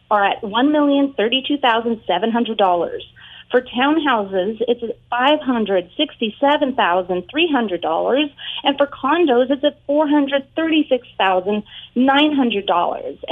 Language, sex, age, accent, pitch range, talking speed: English, female, 30-49, American, 210-285 Hz, 65 wpm